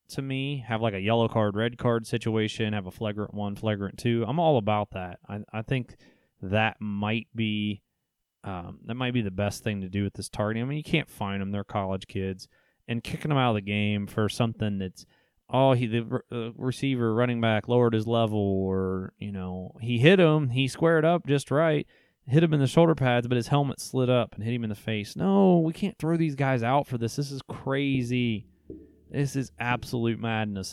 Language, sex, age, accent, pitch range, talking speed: English, male, 20-39, American, 105-130 Hz, 220 wpm